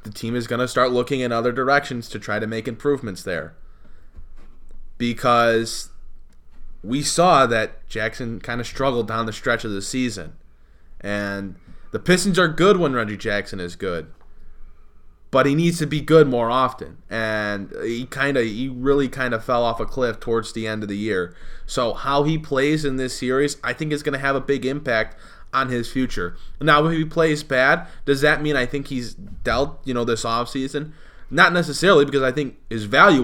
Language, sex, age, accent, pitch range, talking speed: English, male, 20-39, American, 105-140 Hz, 195 wpm